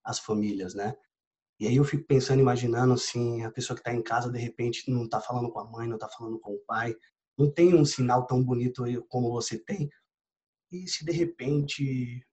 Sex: male